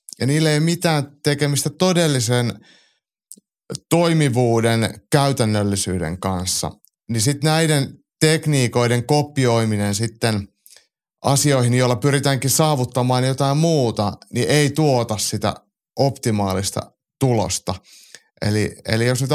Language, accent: Finnish, native